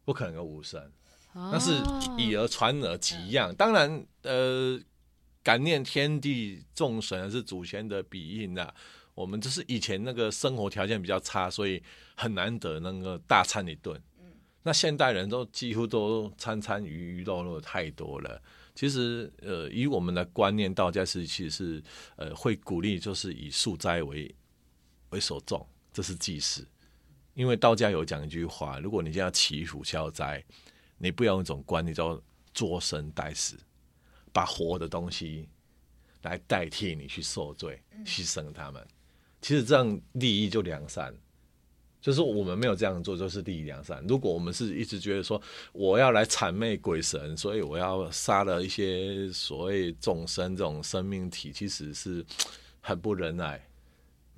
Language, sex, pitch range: Chinese, male, 75-105 Hz